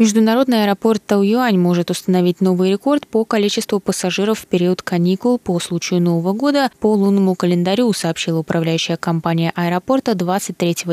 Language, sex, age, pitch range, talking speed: Russian, female, 20-39, 180-220 Hz, 135 wpm